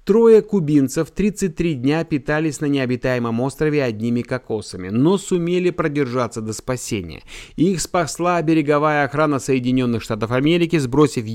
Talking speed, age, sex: 120 wpm, 30-49, male